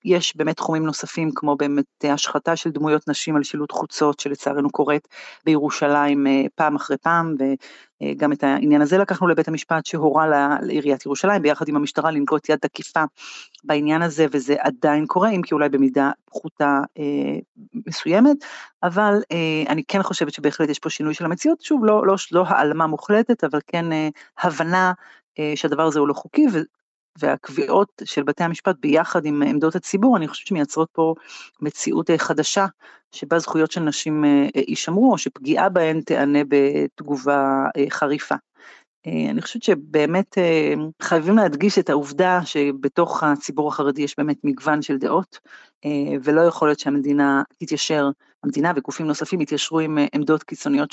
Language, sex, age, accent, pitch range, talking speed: Hebrew, female, 40-59, native, 145-170 Hz, 155 wpm